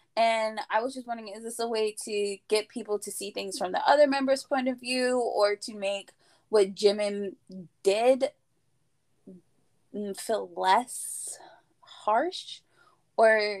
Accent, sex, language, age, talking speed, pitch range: American, female, English, 20-39, 140 wpm, 205-260 Hz